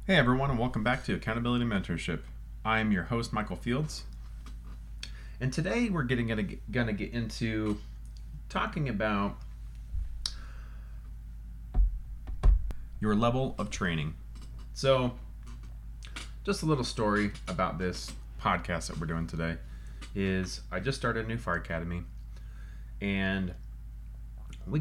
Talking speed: 120 wpm